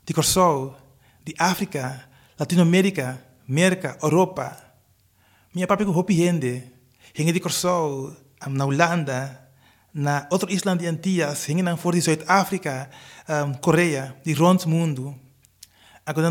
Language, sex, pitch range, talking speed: Dutch, male, 135-185 Hz, 125 wpm